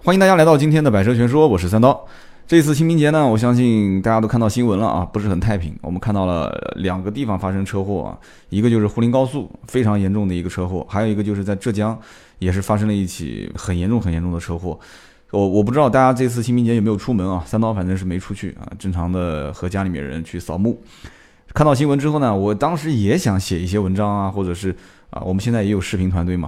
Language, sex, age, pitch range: Chinese, male, 20-39, 95-115 Hz